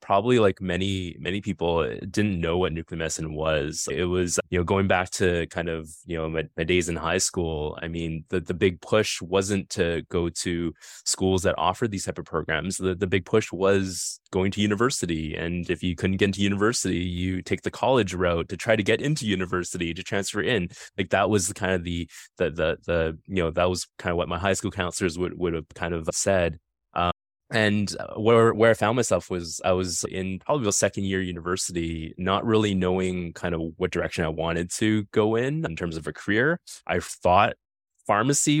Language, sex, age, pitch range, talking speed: English, male, 20-39, 85-105 Hz, 210 wpm